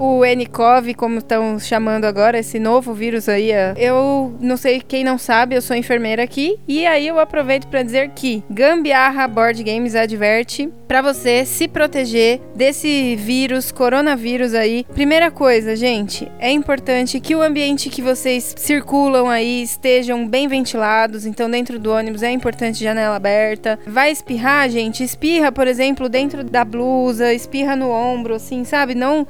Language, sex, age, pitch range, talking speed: Portuguese, female, 20-39, 240-295 Hz, 160 wpm